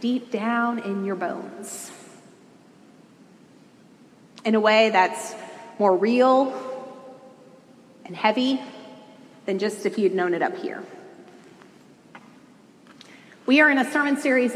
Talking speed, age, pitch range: 110 wpm, 30-49, 215-270 Hz